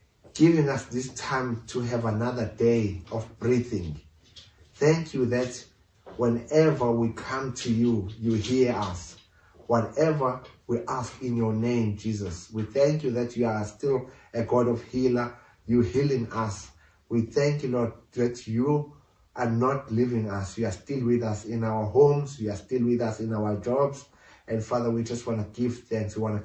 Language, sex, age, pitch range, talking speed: English, male, 30-49, 110-130 Hz, 180 wpm